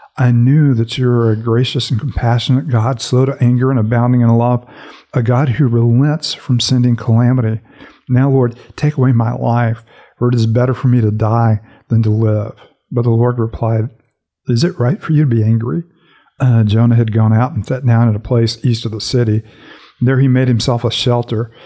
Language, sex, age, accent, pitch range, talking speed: English, male, 50-69, American, 115-125 Hz, 205 wpm